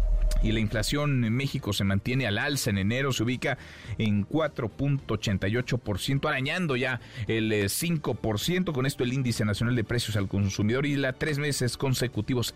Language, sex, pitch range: Spanish, male, 100-125 Hz